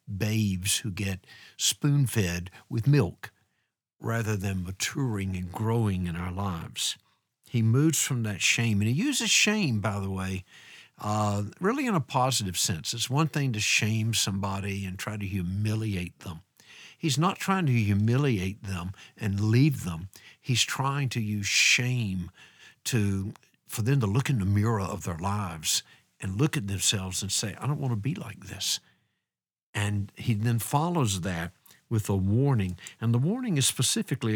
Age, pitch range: 60-79, 100-130 Hz